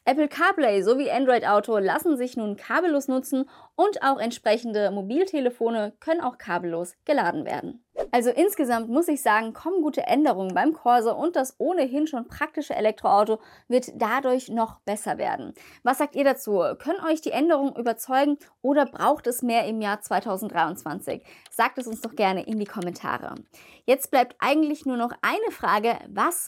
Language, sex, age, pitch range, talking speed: German, female, 20-39, 220-285 Hz, 165 wpm